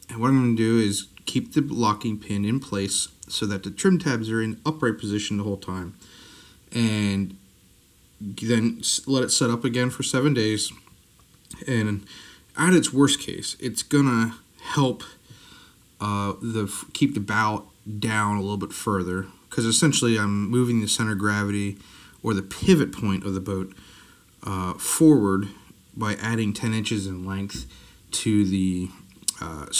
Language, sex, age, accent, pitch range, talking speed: English, male, 30-49, American, 100-115 Hz, 160 wpm